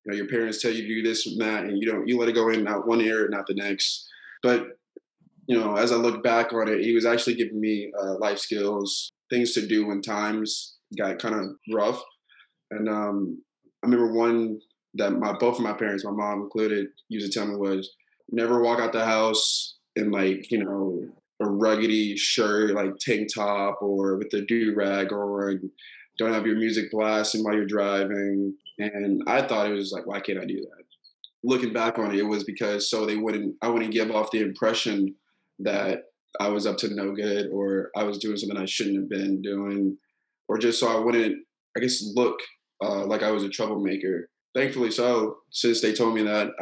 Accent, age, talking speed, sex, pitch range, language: American, 20-39, 210 wpm, male, 100-115 Hz, English